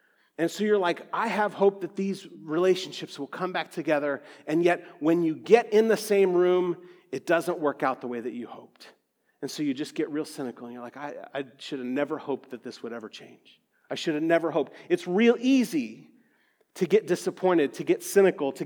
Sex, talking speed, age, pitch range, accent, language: male, 220 wpm, 40-59, 175-240 Hz, American, English